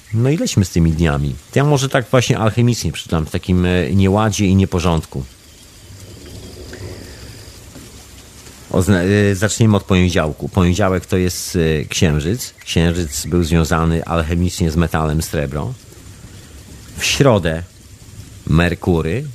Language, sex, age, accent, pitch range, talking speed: Polish, male, 40-59, native, 85-110 Hz, 110 wpm